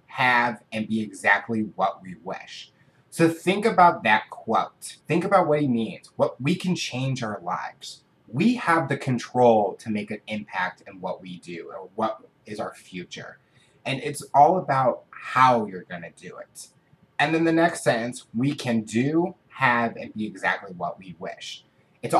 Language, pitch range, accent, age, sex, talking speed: English, 115-150 Hz, American, 30-49, male, 180 wpm